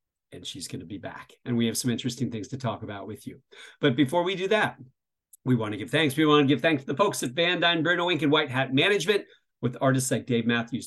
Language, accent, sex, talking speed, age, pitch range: English, American, male, 265 wpm, 50-69, 120-160 Hz